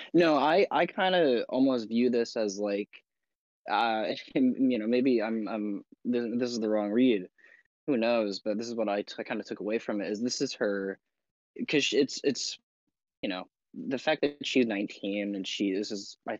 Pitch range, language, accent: 95-115 Hz, English, American